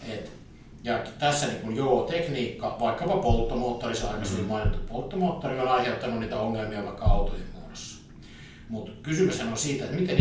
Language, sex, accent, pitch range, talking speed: Finnish, male, native, 105-125 Hz, 155 wpm